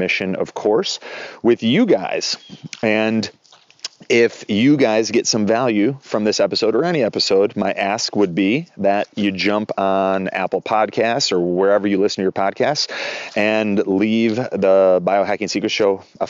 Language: English